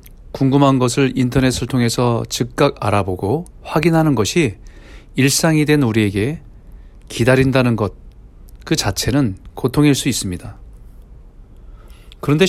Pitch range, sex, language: 105-145 Hz, male, Korean